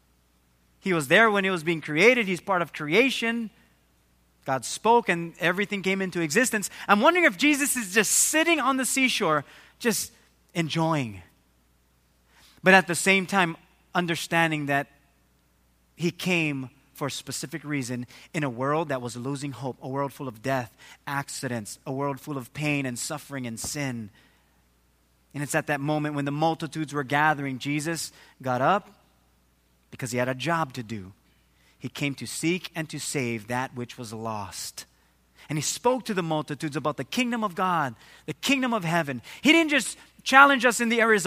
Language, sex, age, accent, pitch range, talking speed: English, male, 30-49, American, 130-205 Hz, 175 wpm